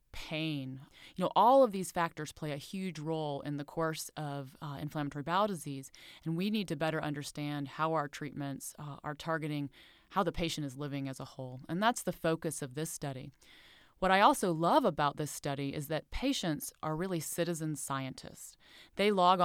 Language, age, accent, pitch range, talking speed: English, 30-49, American, 145-170 Hz, 190 wpm